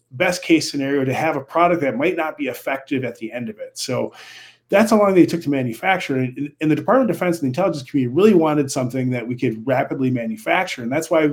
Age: 30-49